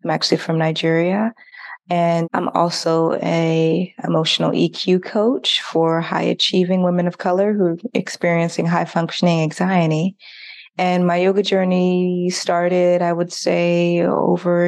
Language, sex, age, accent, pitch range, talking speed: English, female, 20-39, American, 165-185 Hz, 125 wpm